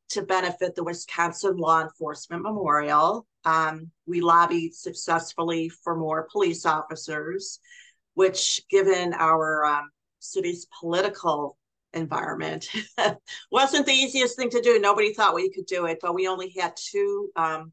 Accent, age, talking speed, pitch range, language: American, 50-69, 135 wpm, 155-185 Hz, English